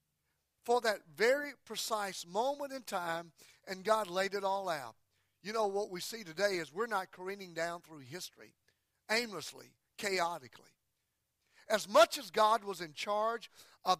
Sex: male